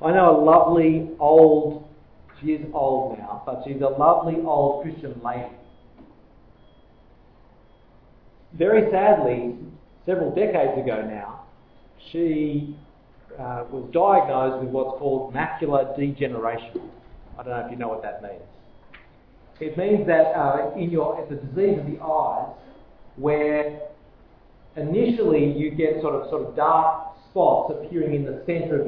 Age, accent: 40-59, Australian